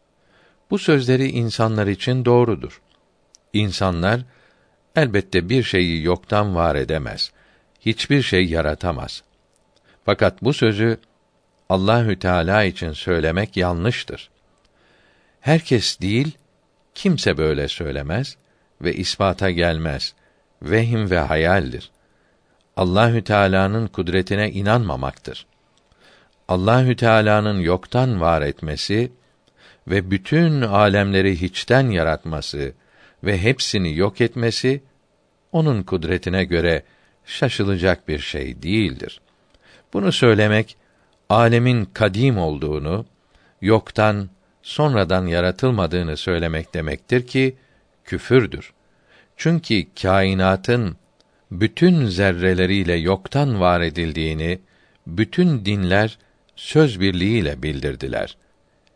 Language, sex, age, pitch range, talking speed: Turkish, male, 60-79, 90-120 Hz, 85 wpm